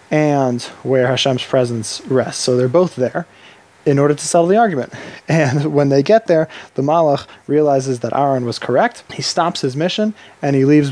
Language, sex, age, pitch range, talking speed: English, male, 20-39, 130-160 Hz, 185 wpm